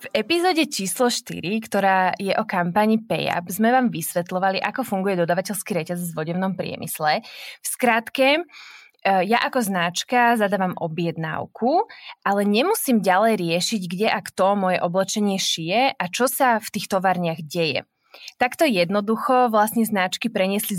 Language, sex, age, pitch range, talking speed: Slovak, female, 20-39, 180-225 Hz, 140 wpm